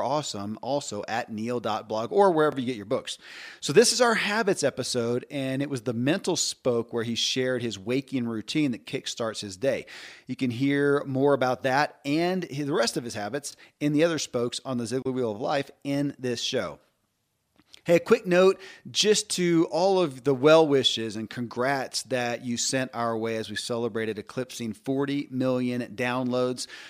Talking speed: 185 wpm